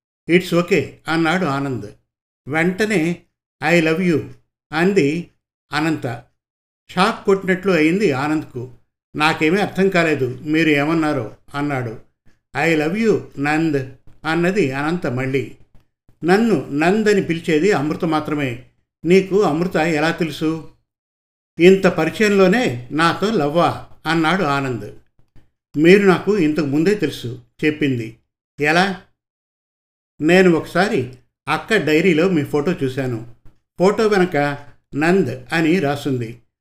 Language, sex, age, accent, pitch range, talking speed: Telugu, male, 50-69, native, 140-180 Hz, 100 wpm